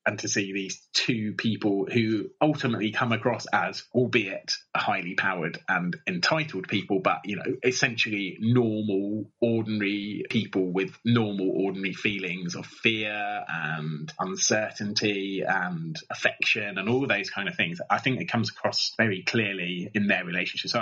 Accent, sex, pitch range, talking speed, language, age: British, male, 100-120 Hz, 150 wpm, English, 30-49